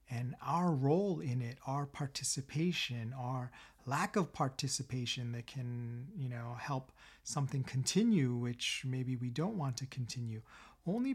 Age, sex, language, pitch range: 40-59, male, English, 120-140 Hz